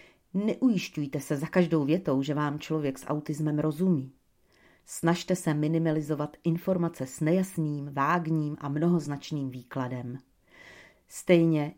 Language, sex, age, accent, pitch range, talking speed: Czech, female, 40-59, native, 145-185 Hz, 110 wpm